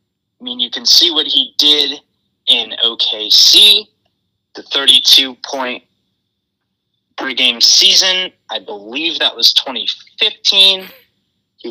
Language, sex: English, male